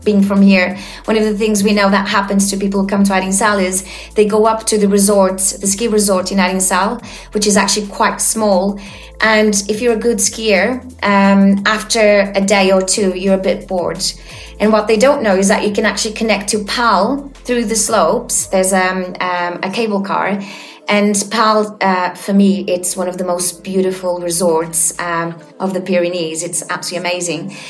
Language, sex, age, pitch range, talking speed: English, female, 30-49, 190-230 Hz, 195 wpm